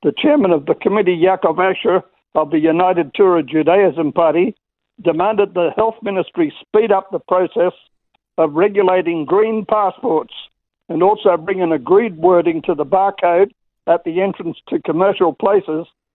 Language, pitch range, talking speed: English, 170-200 Hz, 150 wpm